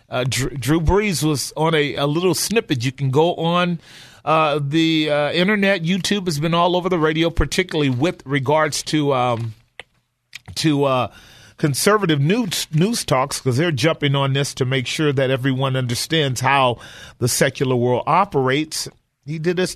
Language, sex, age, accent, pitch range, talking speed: English, male, 40-59, American, 140-175 Hz, 160 wpm